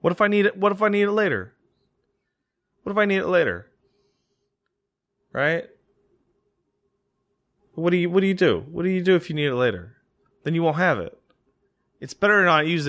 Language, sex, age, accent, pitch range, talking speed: English, male, 20-39, American, 115-170 Hz, 205 wpm